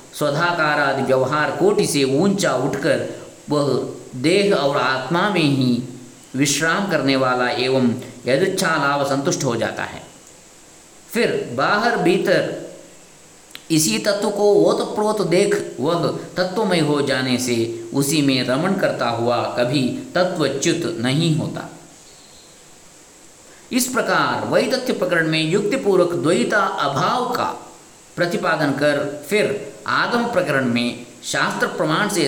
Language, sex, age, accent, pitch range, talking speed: Kannada, male, 50-69, native, 130-175 Hz, 110 wpm